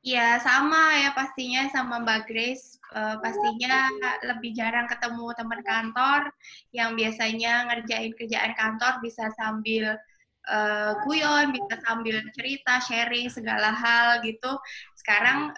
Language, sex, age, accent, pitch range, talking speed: Indonesian, female, 20-39, native, 220-255 Hz, 120 wpm